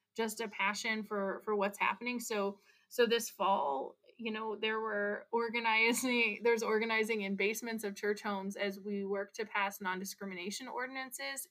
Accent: American